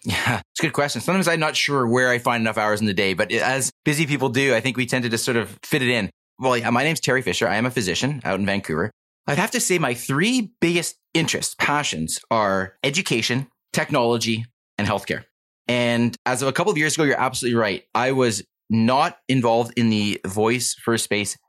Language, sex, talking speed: English, male, 225 wpm